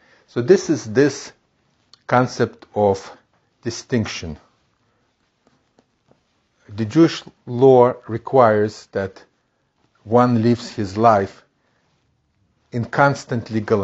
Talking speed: 80 wpm